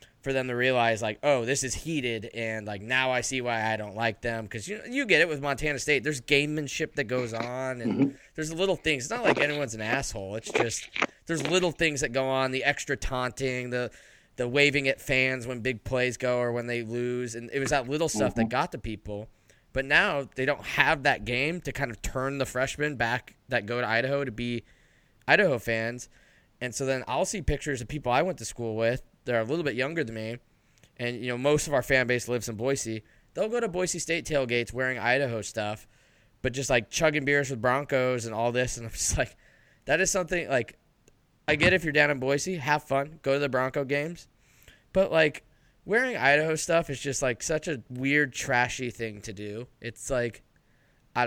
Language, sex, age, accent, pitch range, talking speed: English, male, 20-39, American, 115-145 Hz, 220 wpm